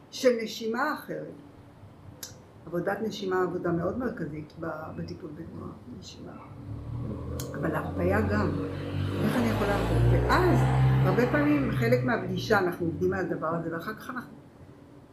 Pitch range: 165-225 Hz